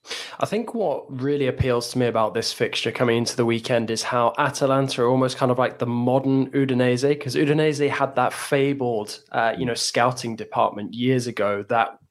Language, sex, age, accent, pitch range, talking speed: English, male, 20-39, British, 115-130 Hz, 185 wpm